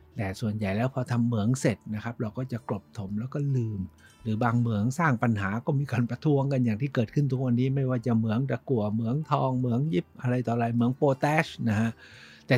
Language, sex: Thai, male